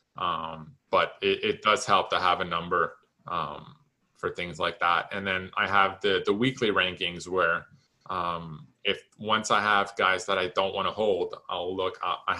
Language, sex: English, male